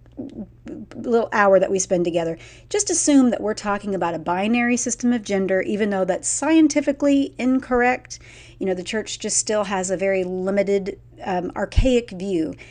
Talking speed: 165 wpm